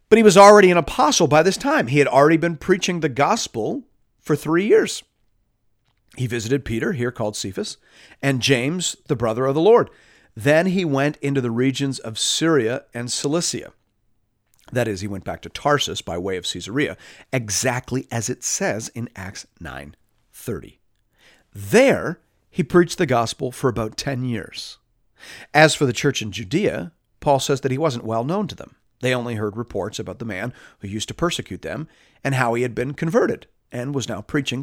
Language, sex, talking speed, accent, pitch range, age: English, male, 185 wpm, American, 115-150 Hz, 50-69